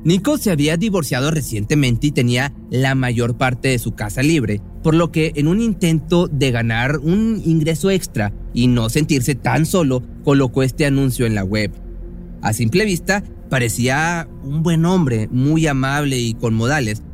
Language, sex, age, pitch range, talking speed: Spanish, male, 30-49, 115-160 Hz, 170 wpm